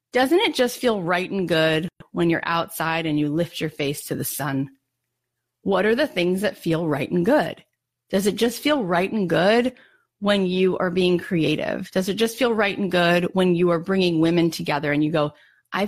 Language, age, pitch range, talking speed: English, 30-49, 165-225 Hz, 210 wpm